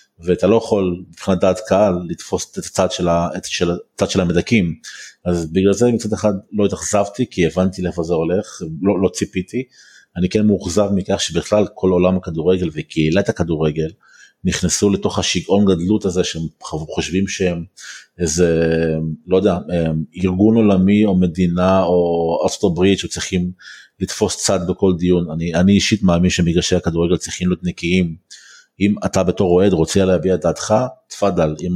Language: Hebrew